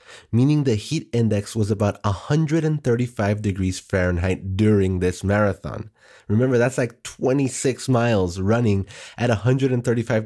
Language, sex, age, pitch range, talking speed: English, male, 30-49, 100-130 Hz, 115 wpm